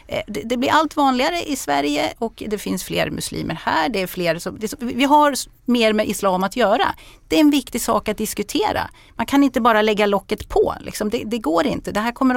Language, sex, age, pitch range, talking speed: Swedish, female, 30-49, 190-280 Hz, 220 wpm